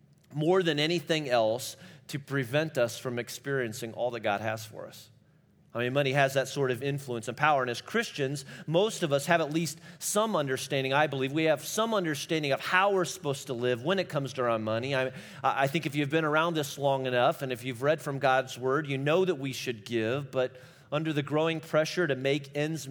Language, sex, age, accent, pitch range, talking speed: English, male, 40-59, American, 125-155 Hz, 225 wpm